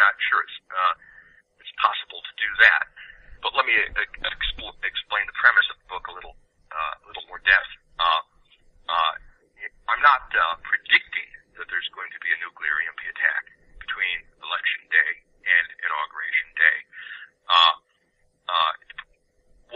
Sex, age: male, 40-59